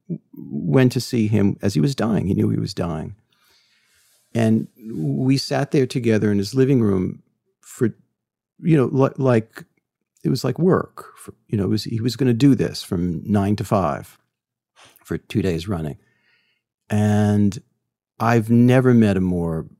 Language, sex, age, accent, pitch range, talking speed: English, male, 50-69, American, 95-120 Hz, 165 wpm